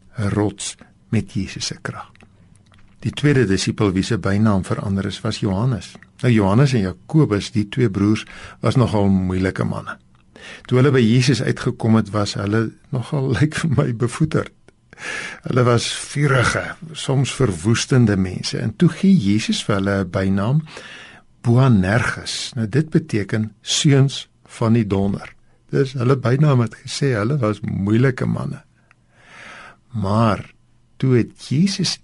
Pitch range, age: 105-140 Hz, 60-79